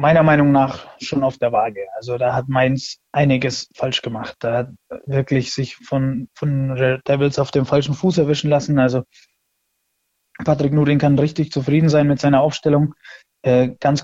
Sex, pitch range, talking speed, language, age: male, 135-150 Hz, 170 wpm, German, 20-39